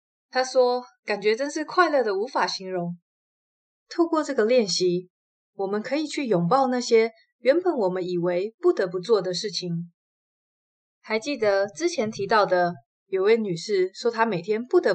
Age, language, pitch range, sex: 20-39, Chinese, 180-270 Hz, female